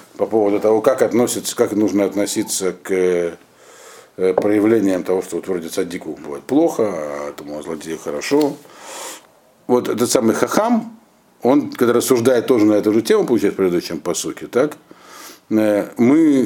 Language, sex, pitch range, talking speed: Russian, male, 110-145 Hz, 140 wpm